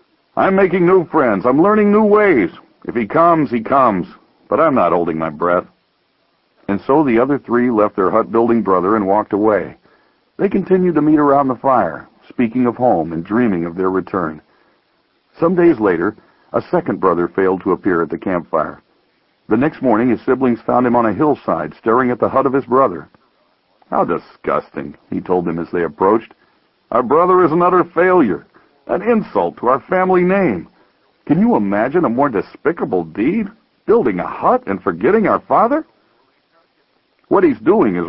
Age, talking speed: 60-79, 175 wpm